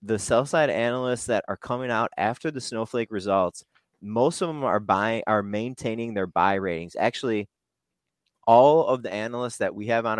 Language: English